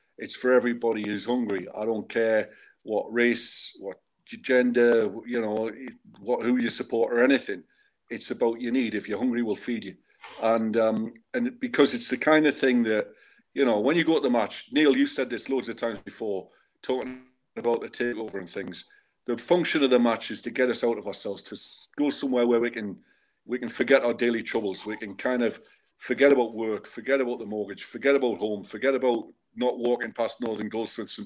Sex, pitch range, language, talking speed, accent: male, 115-130 Hz, English, 205 wpm, British